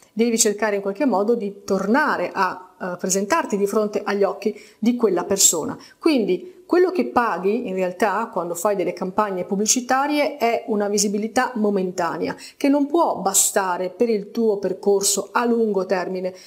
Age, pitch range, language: 30-49, 195-255 Hz, Italian